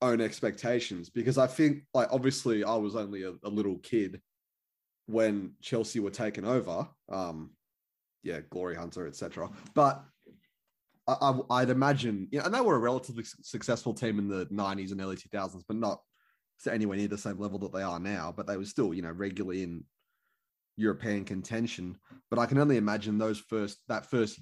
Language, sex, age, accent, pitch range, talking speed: English, male, 20-39, Australian, 95-115 Hz, 180 wpm